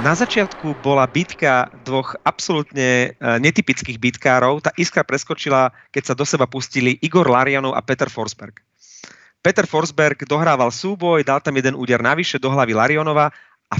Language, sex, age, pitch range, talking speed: Slovak, male, 30-49, 120-150 Hz, 150 wpm